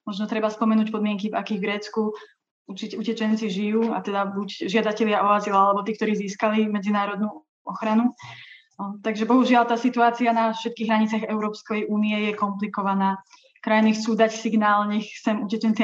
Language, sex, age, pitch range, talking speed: Slovak, female, 20-39, 205-220 Hz, 150 wpm